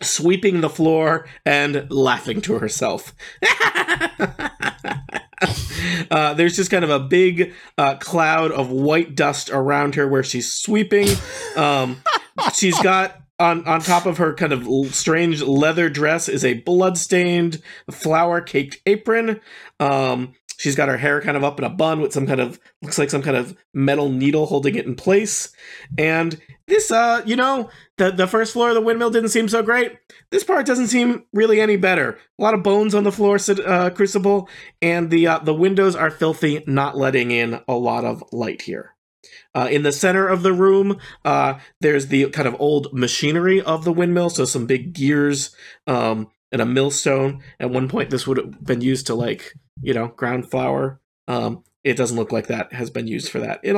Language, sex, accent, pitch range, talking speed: English, male, American, 135-190 Hz, 185 wpm